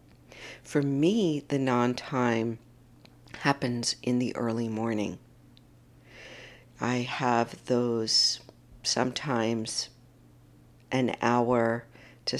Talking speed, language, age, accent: 80 wpm, English, 50-69, American